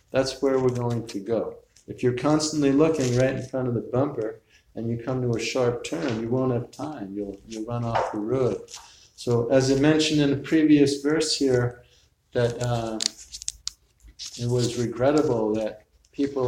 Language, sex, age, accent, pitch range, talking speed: English, male, 50-69, American, 115-140 Hz, 180 wpm